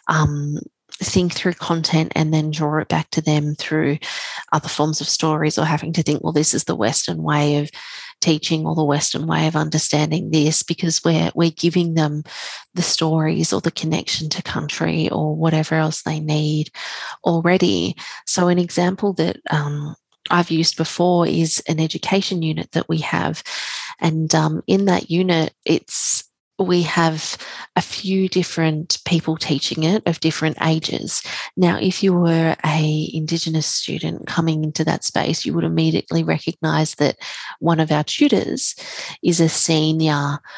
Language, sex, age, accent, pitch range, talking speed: English, female, 30-49, Australian, 150-170 Hz, 160 wpm